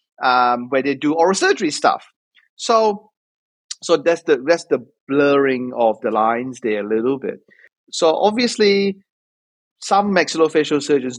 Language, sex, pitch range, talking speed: English, male, 130-200 Hz, 140 wpm